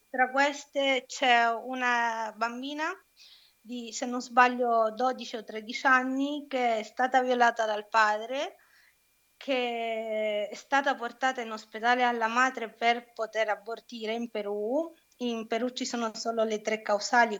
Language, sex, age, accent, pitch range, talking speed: Italian, female, 20-39, native, 220-260 Hz, 140 wpm